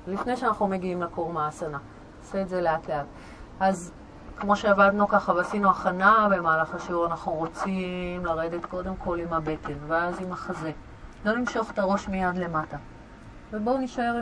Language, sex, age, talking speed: Hebrew, female, 30-49, 150 wpm